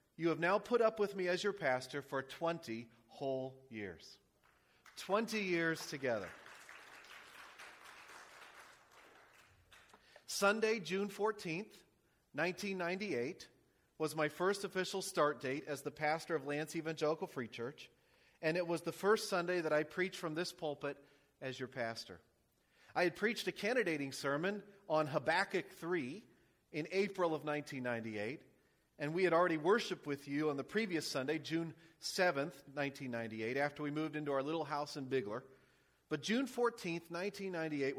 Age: 40-59